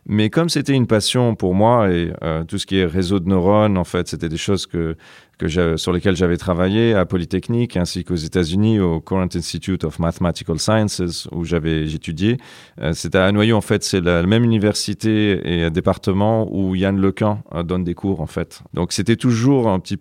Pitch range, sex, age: 90-115 Hz, male, 40-59